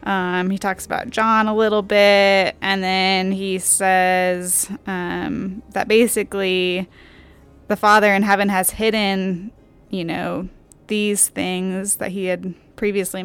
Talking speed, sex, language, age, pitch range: 130 wpm, female, English, 20-39, 185-215 Hz